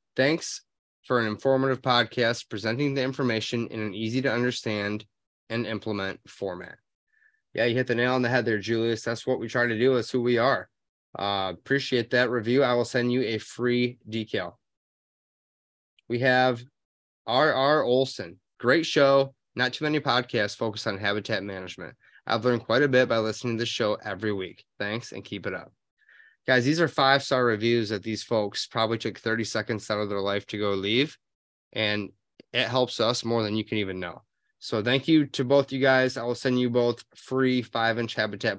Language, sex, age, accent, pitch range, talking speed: English, male, 20-39, American, 110-130 Hz, 190 wpm